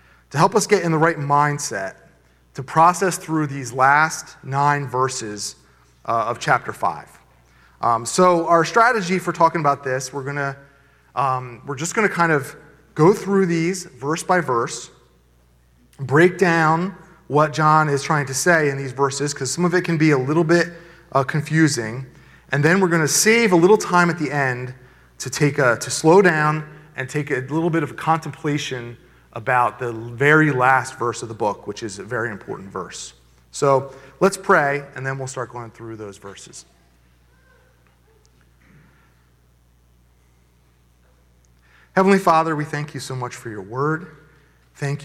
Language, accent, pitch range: English, American, 120-160 Hz